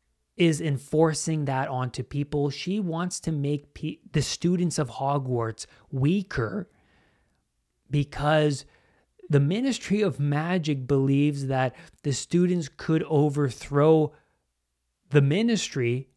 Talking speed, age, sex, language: 100 wpm, 30-49, male, English